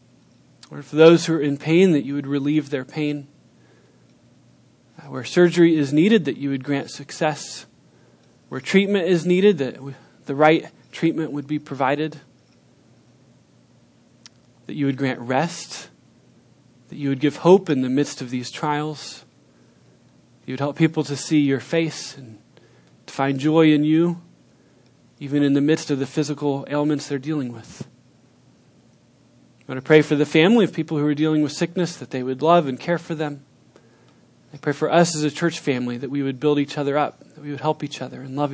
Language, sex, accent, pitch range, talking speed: English, male, American, 140-160 Hz, 185 wpm